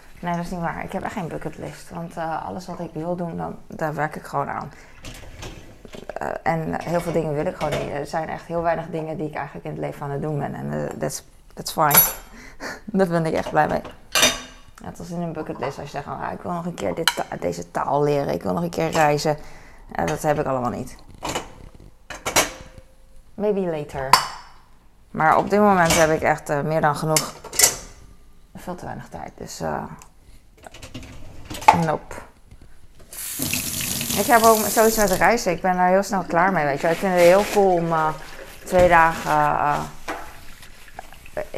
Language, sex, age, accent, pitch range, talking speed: Dutch, female, 20-39, Dutch, 150-180 Hz, 200 wpm